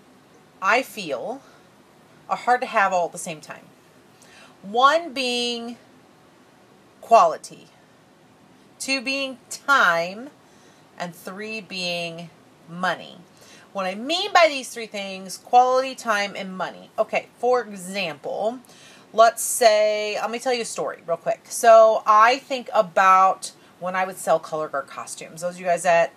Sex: female